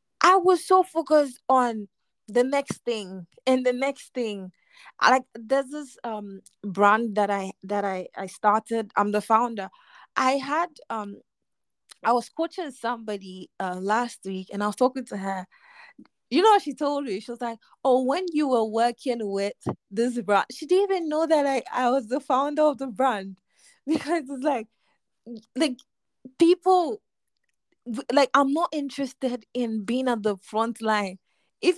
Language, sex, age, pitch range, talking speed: English, female, 20-39, 210-285 Hz, 165 wpm